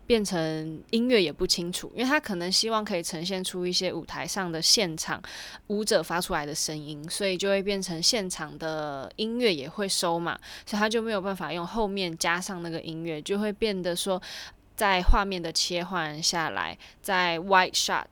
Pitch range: 165-205 Hz